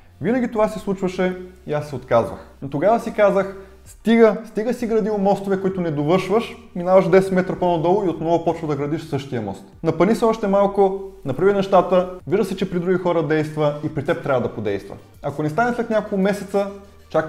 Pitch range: 140-190 Hz